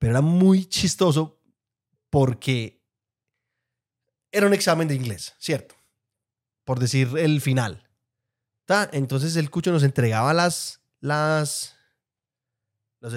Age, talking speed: 30-49, 110 wpm